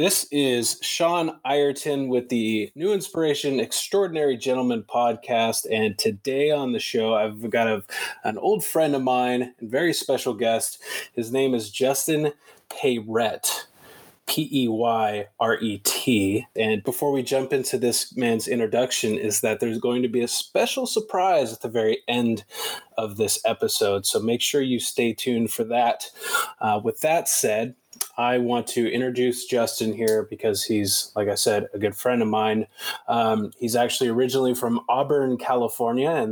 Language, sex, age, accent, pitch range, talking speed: English, male, 20-39, American, 110-140 Hz, 155 wpm